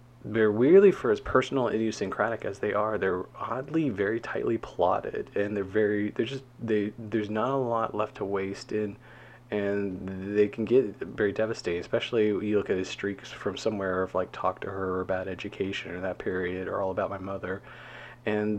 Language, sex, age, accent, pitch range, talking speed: English, male, 30-49, American, 100-125 Hz, 195 wpm